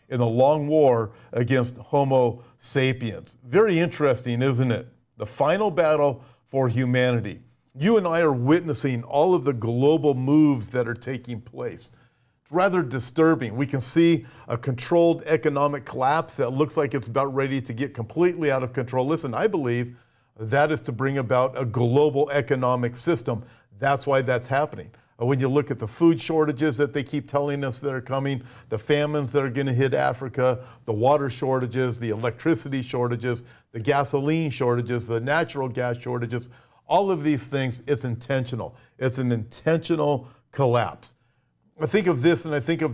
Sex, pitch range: male, 125-145 Hz